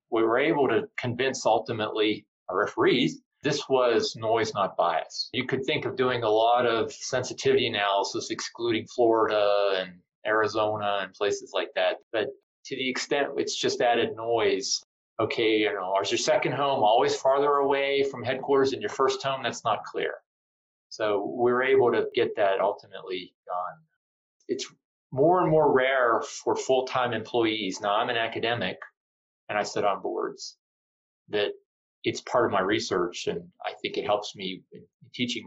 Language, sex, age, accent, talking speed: English, male, 40-59, American, 165 wpm